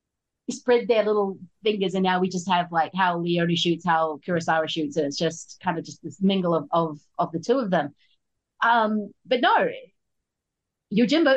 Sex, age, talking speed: female, 30-49, 185 wpm